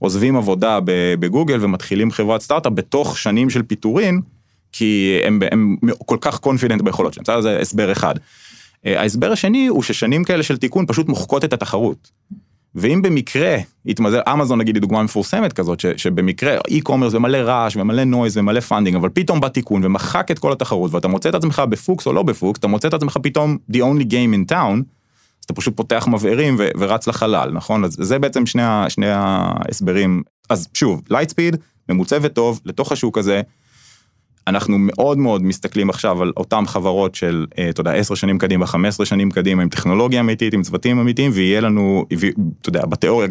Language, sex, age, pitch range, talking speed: Hebrew, male, 30-49, 95-130 Hz, 160 wpm